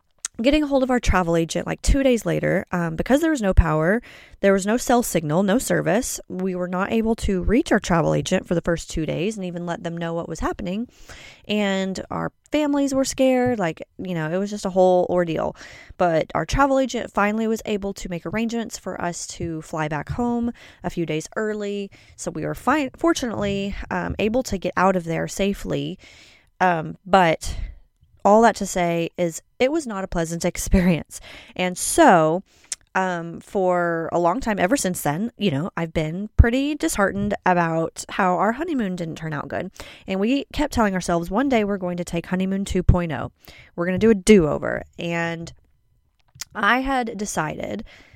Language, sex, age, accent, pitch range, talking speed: English, female, 20-39, American, 170-225 Hz, 190 wpm